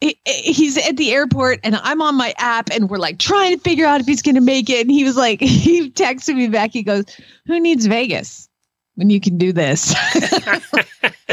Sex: female